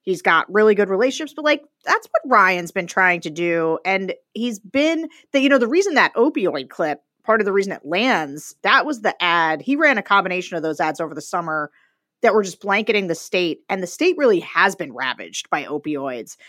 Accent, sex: American, female